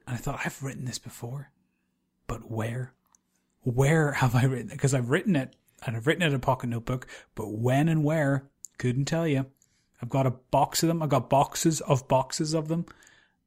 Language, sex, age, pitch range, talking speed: English, male, 30-49, 120-145 Hz, 205 wpm